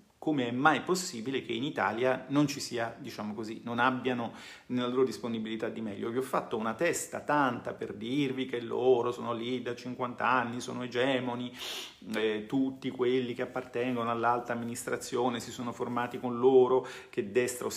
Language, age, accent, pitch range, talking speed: Italian, 40-59, native, 115-135 Hz, 170 wpm